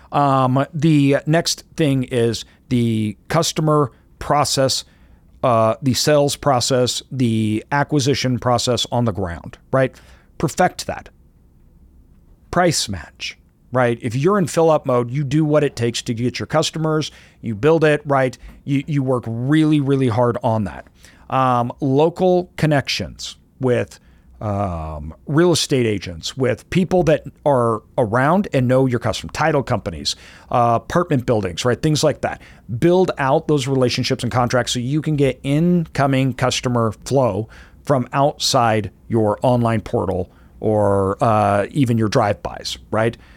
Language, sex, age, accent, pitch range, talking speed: English, male, 40-59, American, 110-145 Hz, 140 wpm